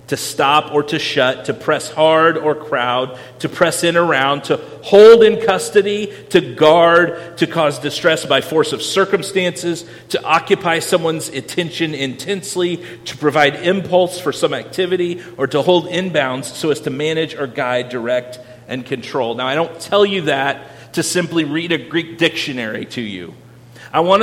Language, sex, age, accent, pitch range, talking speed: English, male, 40-59, American, 135-175 Hz, 165 wpm